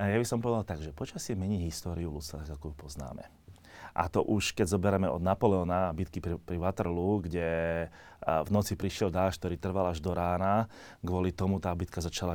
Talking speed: 200 wpm